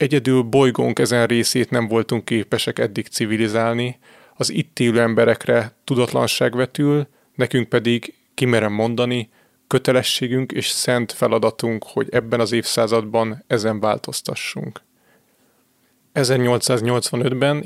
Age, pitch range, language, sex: 30-49, 115-130 Hz, Hungarian, male